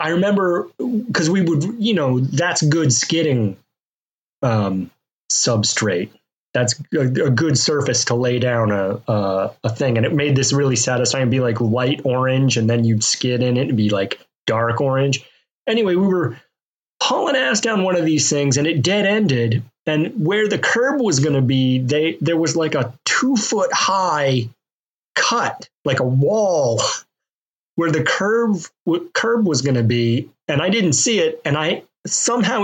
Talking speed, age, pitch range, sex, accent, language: 175 wpm, 30-49, 125-170 Hz, male, American, English